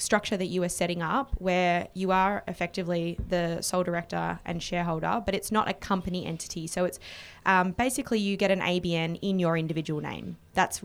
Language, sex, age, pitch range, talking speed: English, female, 20-39, 170-200 Hz, 190 wpm